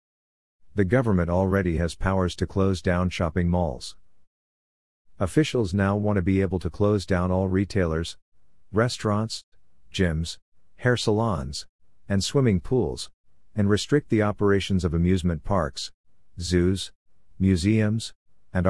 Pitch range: 85-105 Hz